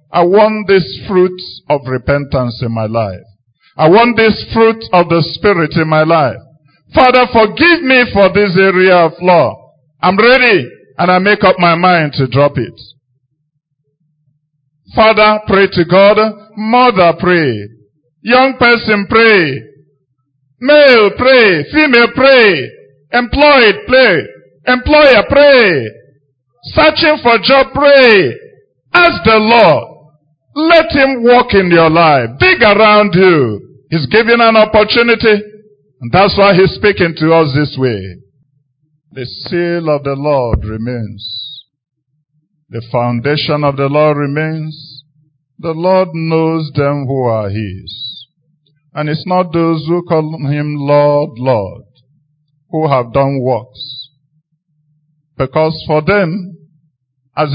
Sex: male